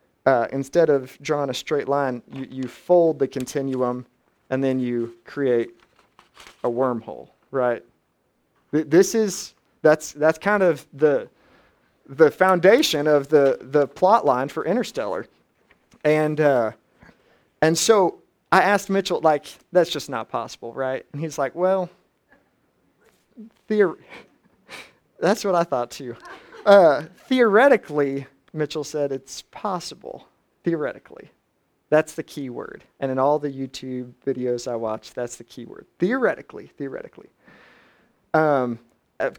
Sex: male